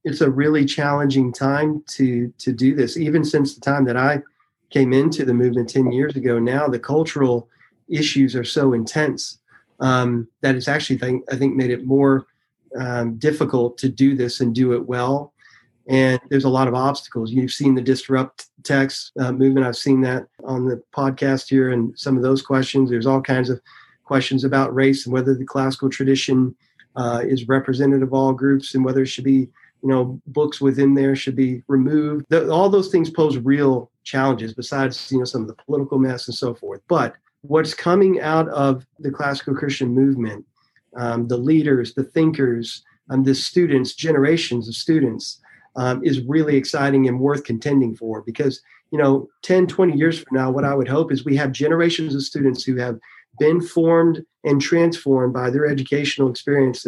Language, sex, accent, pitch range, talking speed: English, male, American, 130-145 Hz, 185 wpm